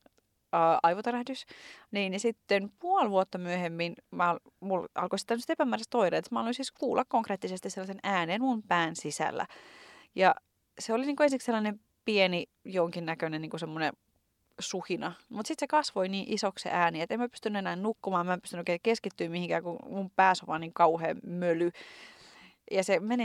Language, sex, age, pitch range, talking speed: Finnish, female, 30-49, 175-235 Hz, 165 wpm